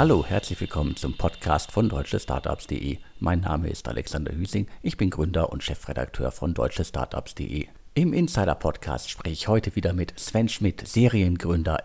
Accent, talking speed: German, 155 wpm